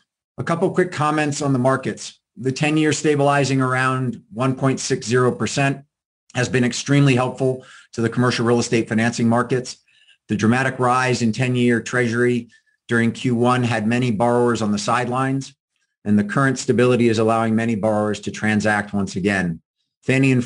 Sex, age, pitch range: male, 50-69, 110-130 Hz